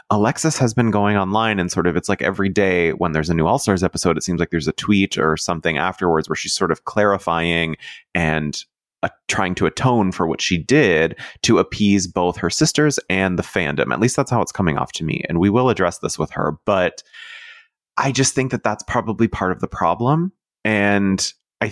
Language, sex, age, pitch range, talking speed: English, male, 30-49, 90-125 Hz, 215 wpm